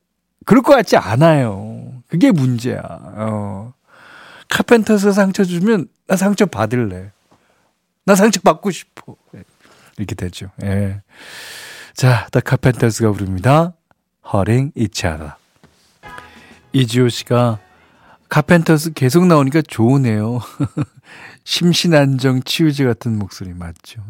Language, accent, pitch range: Korean, native, 105-160 Hz